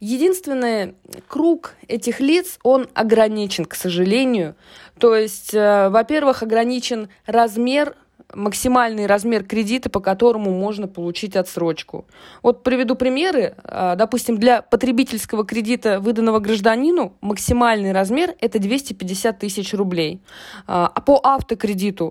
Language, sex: Russian, female